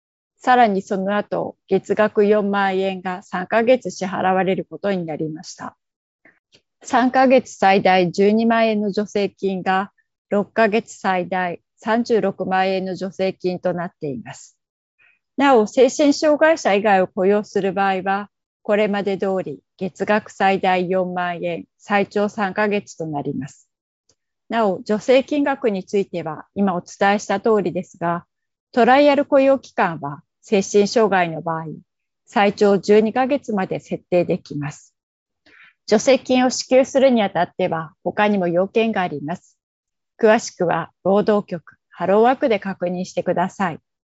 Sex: female